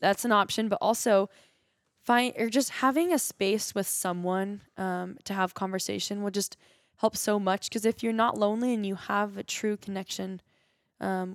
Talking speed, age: 180 wpm, 10-29